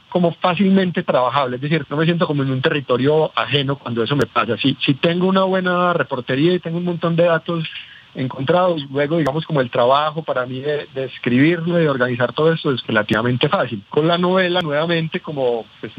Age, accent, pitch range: 40-59, Colombian, 125-160 Hz